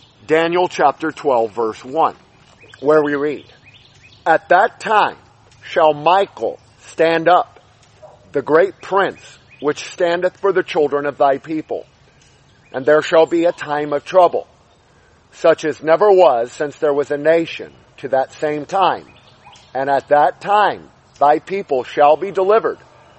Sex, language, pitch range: male, English, 140-175 Hz